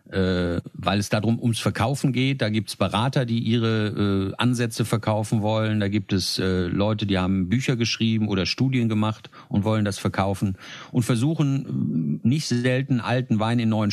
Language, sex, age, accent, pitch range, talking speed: German, male, 50-69, German, 105-125 Hz, 170 wpm